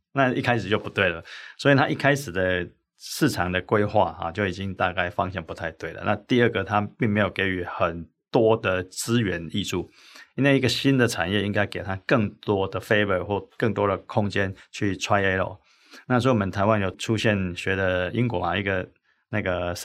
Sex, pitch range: male, 95-115 Hz